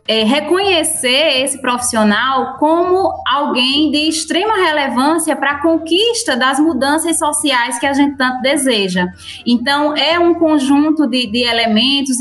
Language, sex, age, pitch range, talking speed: Portuguese, female, 20-39, 235-300 Hz, 130 wpm